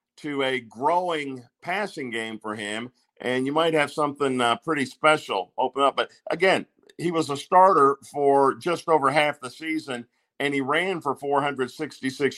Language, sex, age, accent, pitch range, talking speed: English, male, 50-69, American, 120-145 Hz, 165 wpm